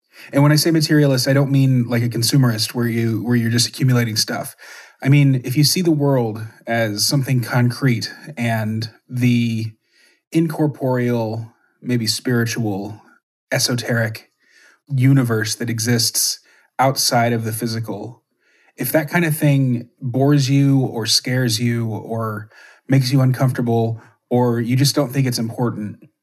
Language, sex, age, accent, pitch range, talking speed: English, male, 30-49, American, 115-130 Hz, 145 wpm